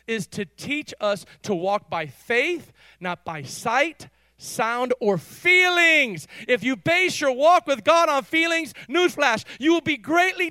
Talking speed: 160 wpm